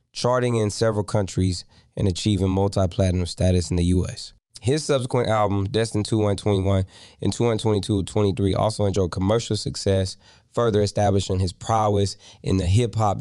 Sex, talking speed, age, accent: male, 140 wpm, 20-39, American